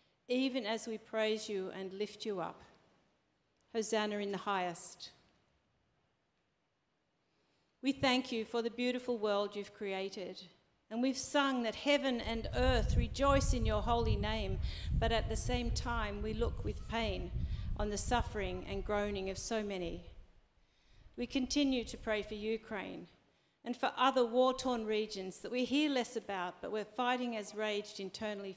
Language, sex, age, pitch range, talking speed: English, female, 50-69, 190-240 Hz, 155 wpm